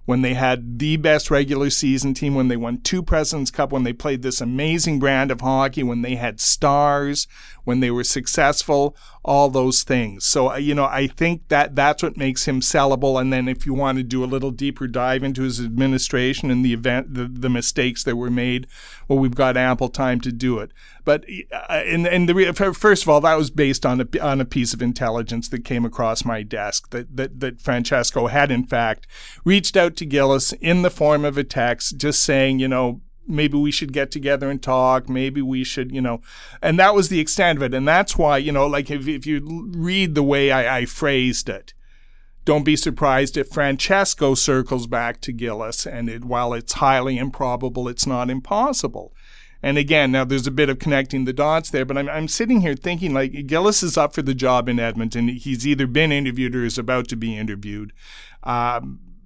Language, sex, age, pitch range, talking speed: English, male, 40-59, 125-145 Hz, 210 wpm